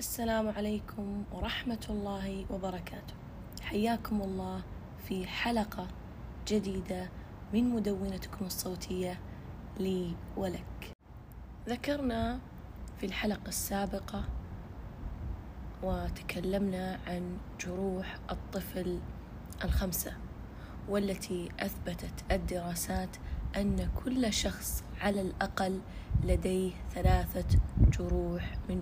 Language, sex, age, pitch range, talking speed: Arabic, female, 20-39, 180-210 Hz, 75 wpm